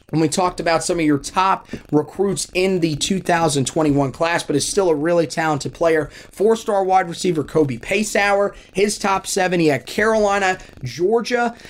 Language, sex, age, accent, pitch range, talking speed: English, male, 30-49, American, 150-190 Hz, 165 wpm